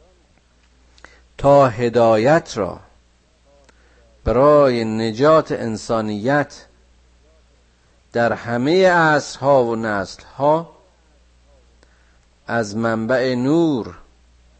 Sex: male